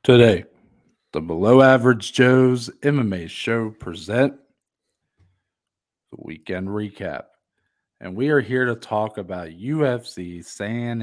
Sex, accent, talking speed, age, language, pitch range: male, American, 110 wpm, 40-59, English, 95-125 Hz